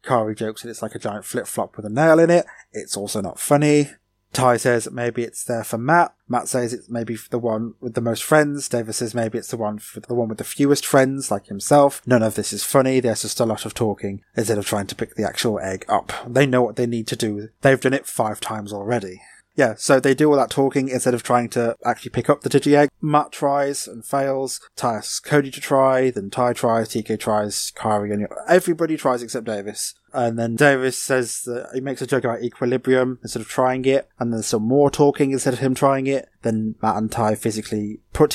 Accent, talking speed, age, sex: British, 230 wpm, 20-39, male